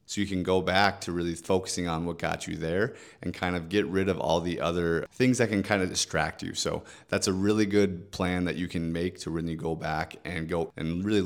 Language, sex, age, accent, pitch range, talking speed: English, male, 30-49, American, 85-100 Hz, 250 wpm